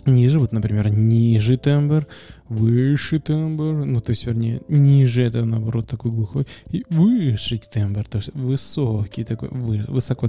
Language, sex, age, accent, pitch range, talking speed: Russian, male, 20-39, native, 110-130 Hz, 140 wpm